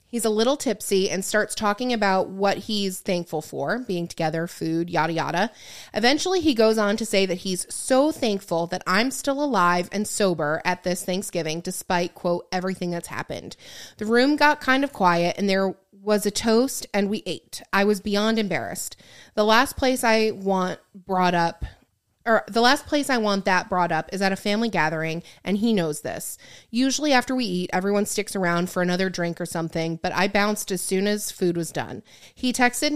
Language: English